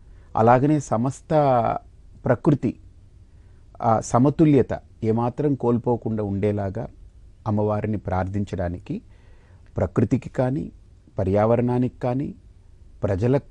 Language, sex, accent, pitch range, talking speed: Telugu, male, native, 95-125 Hz, 60 wpm